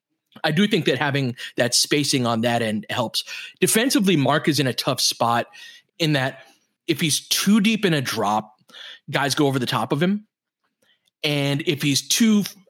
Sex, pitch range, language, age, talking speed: male, 130-170 Hz, English, 20-39, 180 wpm